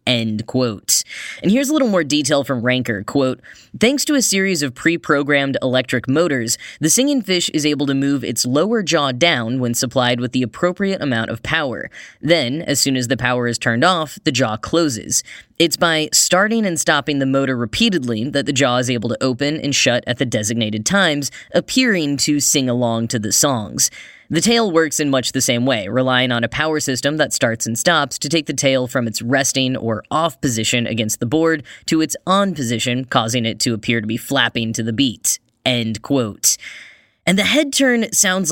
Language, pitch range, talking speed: English, 125-175 Hz, 200 wpm